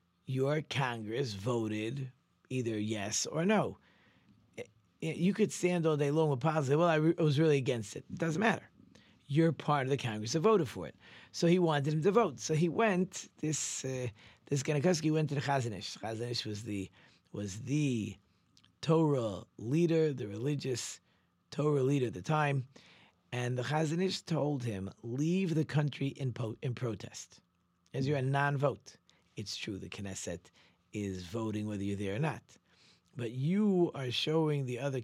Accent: American